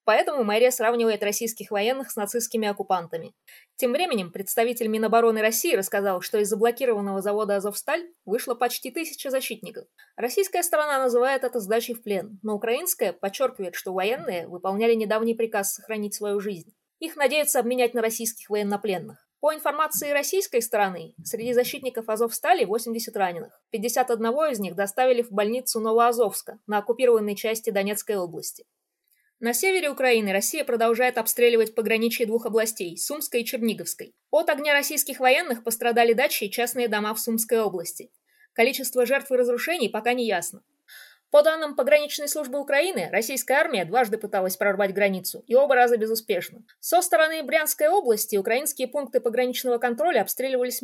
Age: 20-39